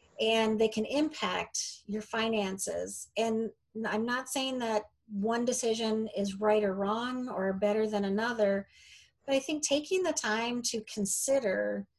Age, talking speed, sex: 40-59, 145 wpm, female